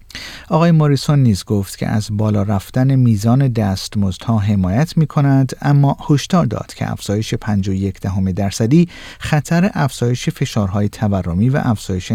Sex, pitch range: male, 100-140 Hz